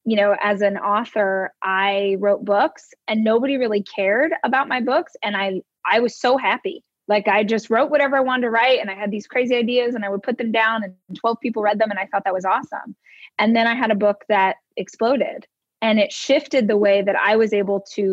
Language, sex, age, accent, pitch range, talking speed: English, female, 20-39, American, 200-240 Hz, 235 wpm